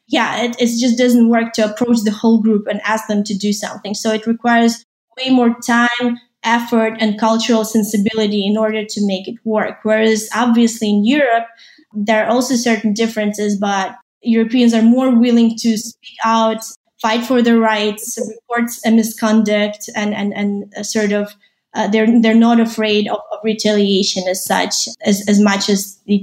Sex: female